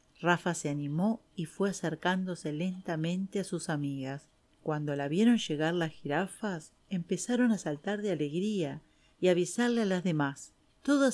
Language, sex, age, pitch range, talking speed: Spanish, female, 40-59, 155-205 Hz, 145 wpm